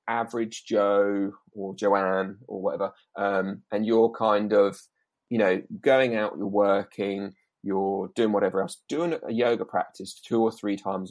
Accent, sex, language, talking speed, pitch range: British, male, English, 155 wpm, 100-115 Hz